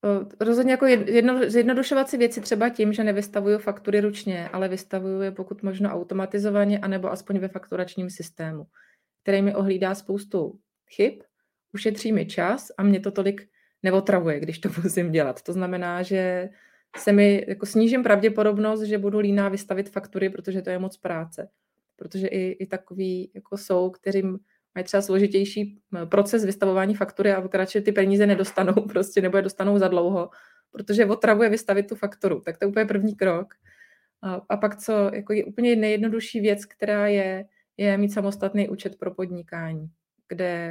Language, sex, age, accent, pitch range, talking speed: Czech, female, 20-39, native, 180-205 Hz, 165 wpm